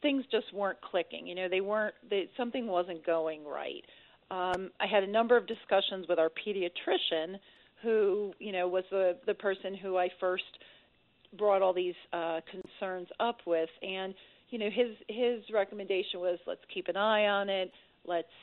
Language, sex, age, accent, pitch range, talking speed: English, female, 40-59, American, 175-215 Hz, 175 wpm